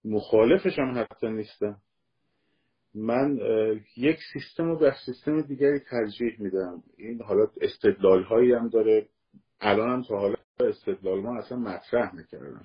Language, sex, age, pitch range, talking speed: Persian, male, 50-69, 105-160 Hz, 135 wpm